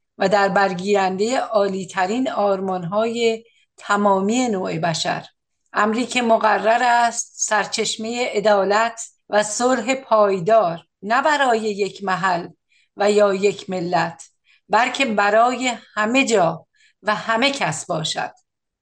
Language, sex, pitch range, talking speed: Persian, female, 195-235 Hz, 105 wpm